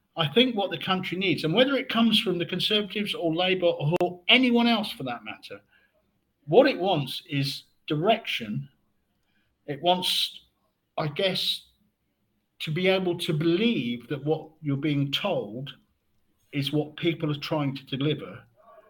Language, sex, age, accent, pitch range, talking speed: English, male, 50-69, British, 115-165 Hz, 150 wpm